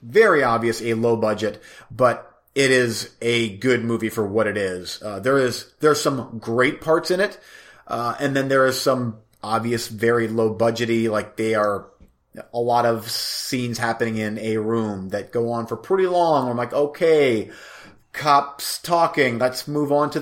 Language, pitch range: English, 115-150 Hz